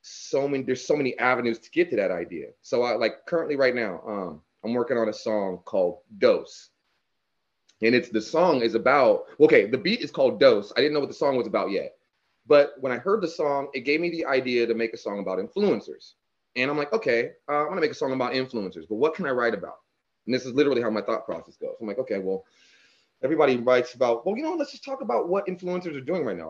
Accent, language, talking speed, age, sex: American, English, 250 wpm, 30-49, male